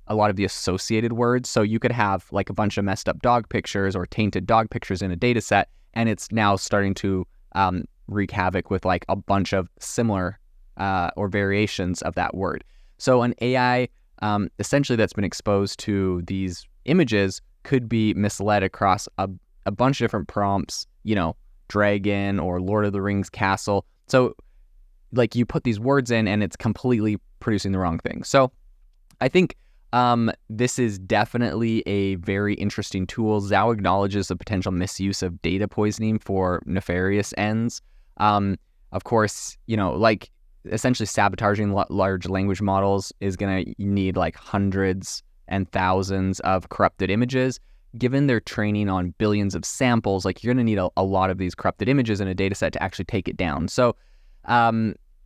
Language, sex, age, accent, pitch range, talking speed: English, male, 20-39, American, 95-110 Hz, 180 wpm